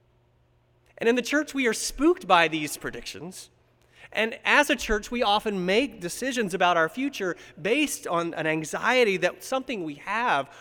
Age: 30-49